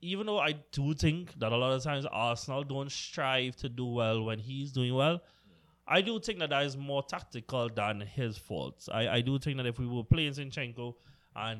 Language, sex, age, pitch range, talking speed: English, male, 20-39, 110-155 Hz, 215 wpm